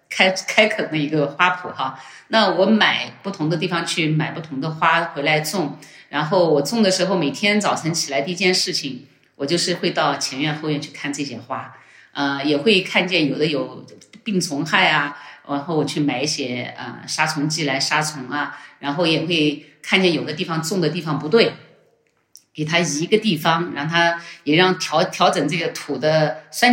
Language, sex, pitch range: Chinese, female, 145-180 Hz